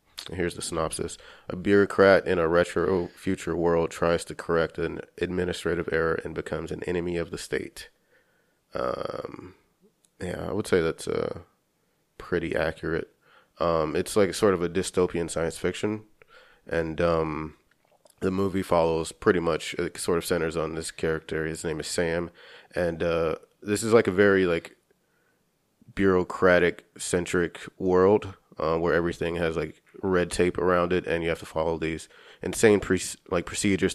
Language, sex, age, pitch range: English, male, 30-49, 85-95 Hz